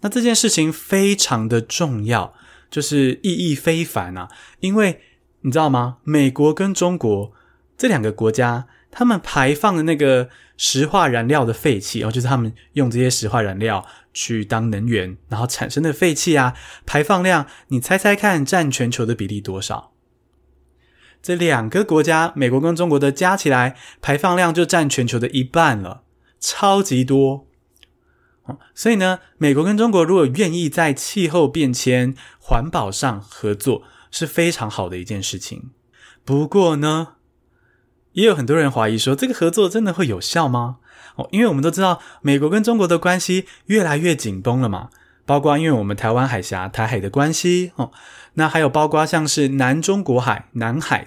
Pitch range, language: 120-175 Hz, Chinese